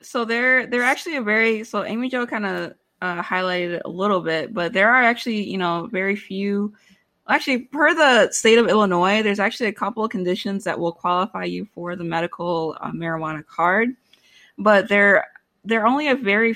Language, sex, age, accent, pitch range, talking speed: English, female, 20-39, American, 175-215 Hz, 190 wpm